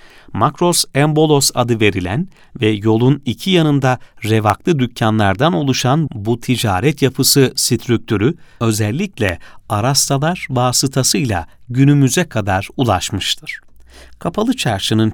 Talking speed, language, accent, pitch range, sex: 85 wpm, Turkish, native, 110-150 Hz, male